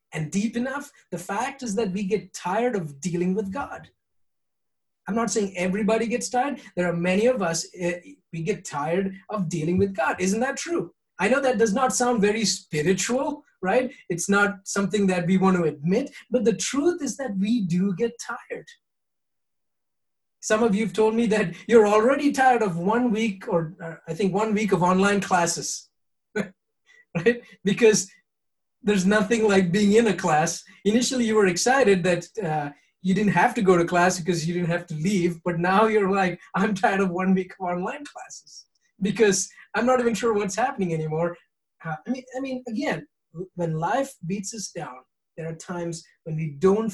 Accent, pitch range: Indian, 175-230 Hz